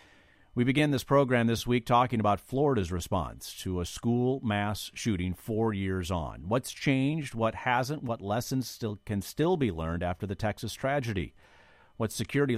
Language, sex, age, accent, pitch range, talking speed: English, male, 50-69, American, 95-125 Hz, 165 wpm